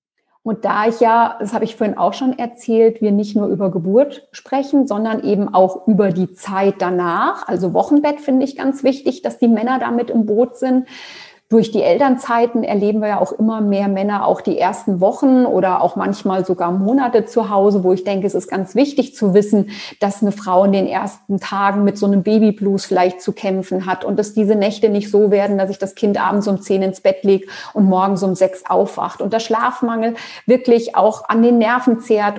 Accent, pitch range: German, 195-230 Hz